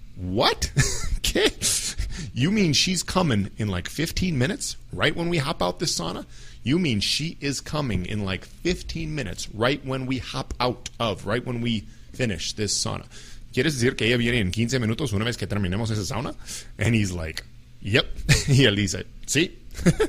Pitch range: 105-145 Hz